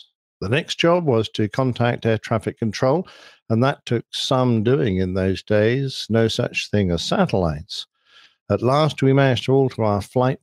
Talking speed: 175 wpm